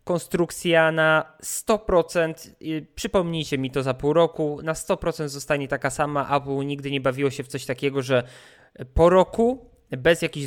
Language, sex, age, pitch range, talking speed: Polish, male, 20-39, 135-160 Hz, 155 wpm